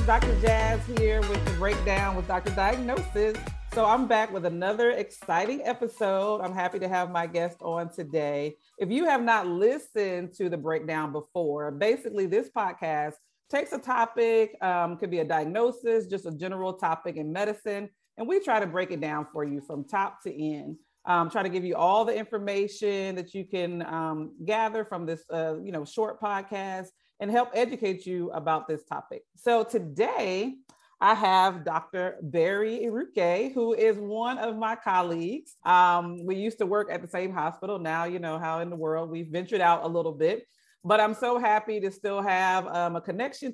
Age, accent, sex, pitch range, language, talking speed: 40-59, American, female, 165-225 Hz, English, 185 wpm